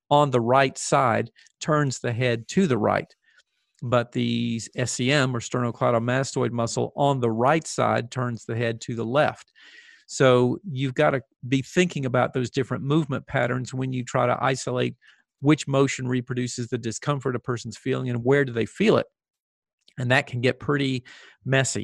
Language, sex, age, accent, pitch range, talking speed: English, male, 50-69, American, 120-135 Hz, 170 wpm